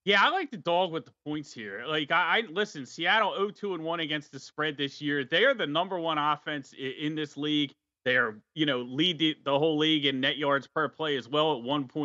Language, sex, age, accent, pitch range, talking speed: English, male, 30-49, American, 135-160 Hz, 240 wpm